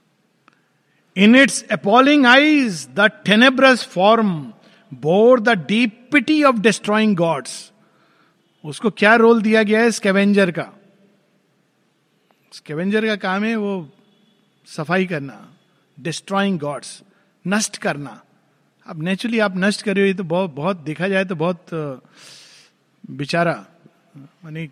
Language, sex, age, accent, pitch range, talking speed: Hindi, male, 50-69, native, 165-220 Hz, 120 wpm